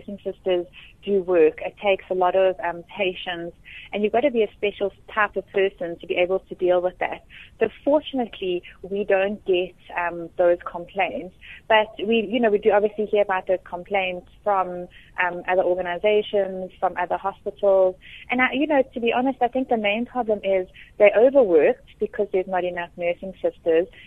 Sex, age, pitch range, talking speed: female, 30-49, 180-205 Hz, 190 wpm